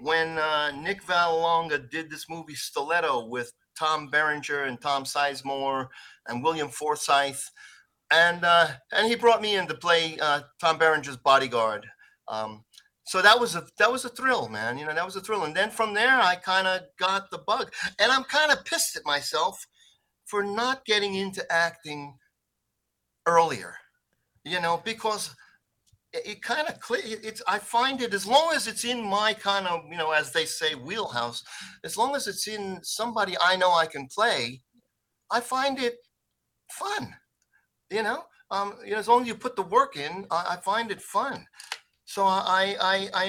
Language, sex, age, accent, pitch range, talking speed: English, male, 50-69, American, 150-220 Hz, 180 wpm